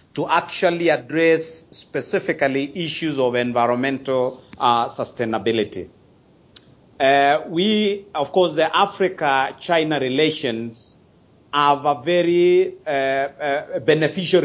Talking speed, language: 90 wpm, English